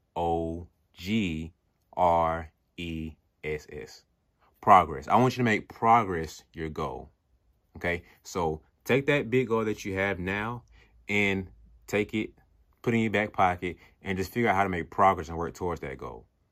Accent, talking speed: American, 165 wpm